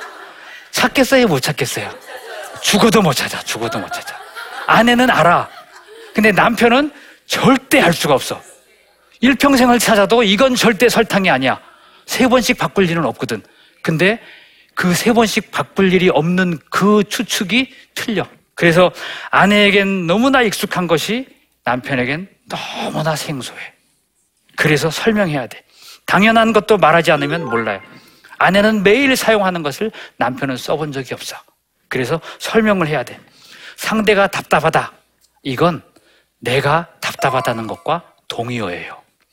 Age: 40-59